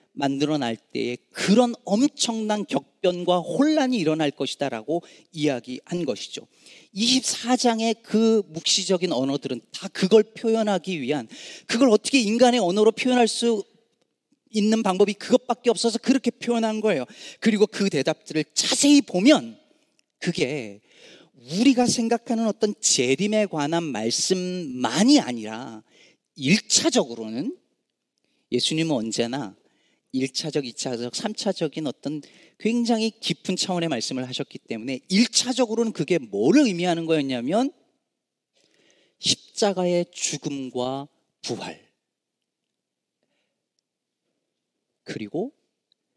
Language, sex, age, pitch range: Korean, male, 40-59, 145-230 Hz